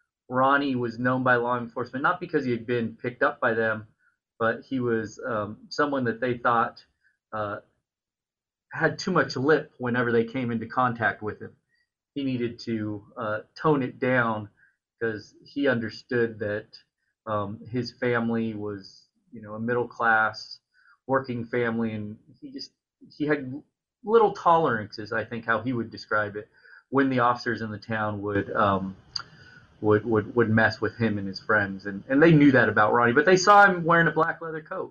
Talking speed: 175 wpm